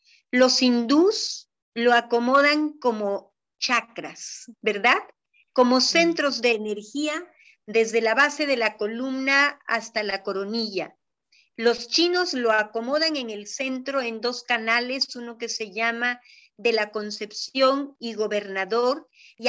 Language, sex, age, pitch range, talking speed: Spanish, female, 40-59, 220-265 Hz, 125 wpm